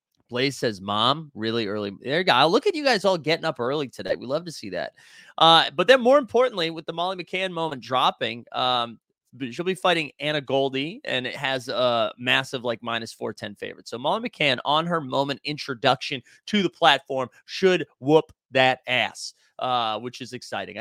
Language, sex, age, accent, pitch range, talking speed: English, male, 30-49, American, 120-170 Hz, 195 wpm